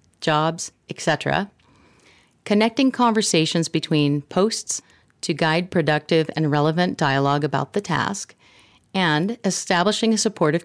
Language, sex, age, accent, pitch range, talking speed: English, female, 40-59, American, 150-195 Hz, 105 wpm